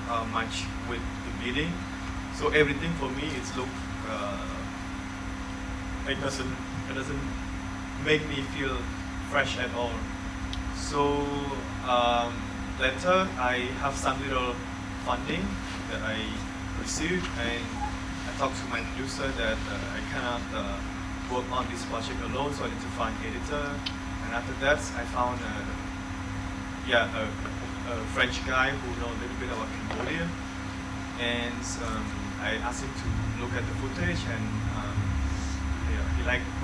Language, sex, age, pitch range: Thai, male, 20-39, 90-115 Hz